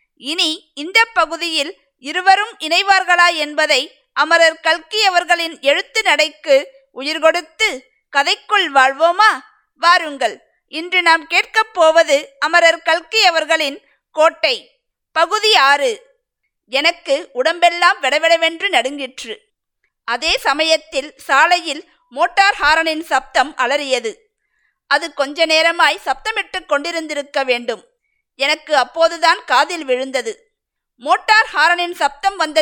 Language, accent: Tamil, native